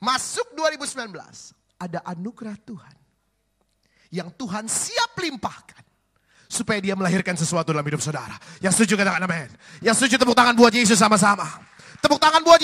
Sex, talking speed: male, 145 wpm